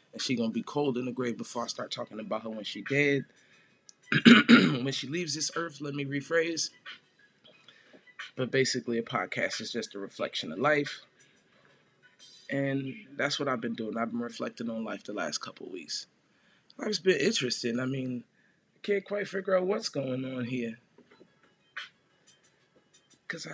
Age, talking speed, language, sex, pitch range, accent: 20-39, 170 wpm, English, male, 130-170 Hz, American